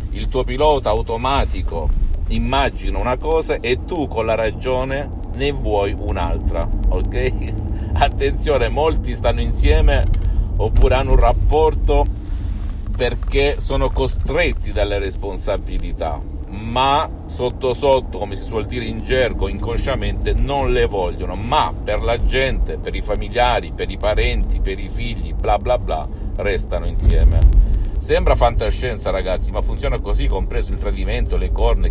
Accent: native